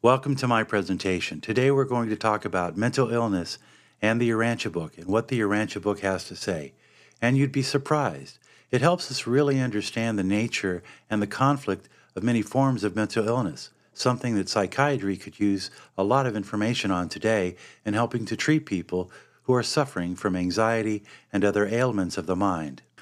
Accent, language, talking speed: American, English, 185 wpm